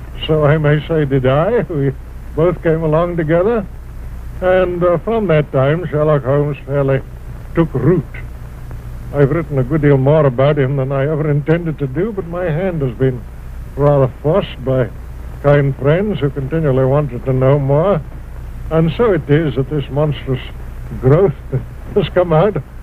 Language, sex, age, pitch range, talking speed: English, male, 60-79, 130-165 Hz, 165 wpm